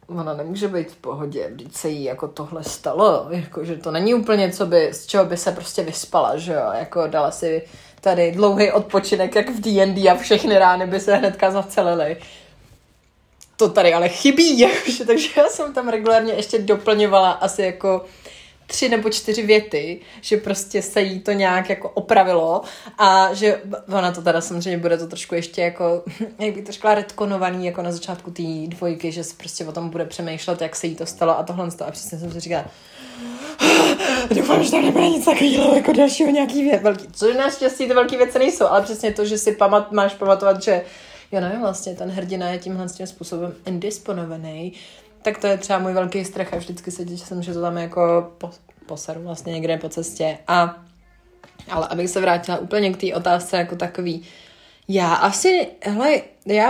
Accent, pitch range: native, 170-210 Hz